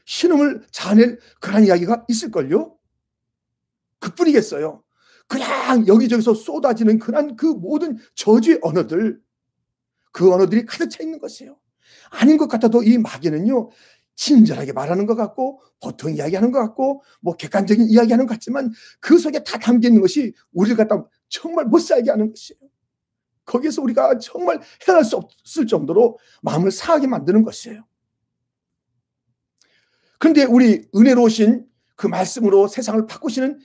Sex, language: male, Korean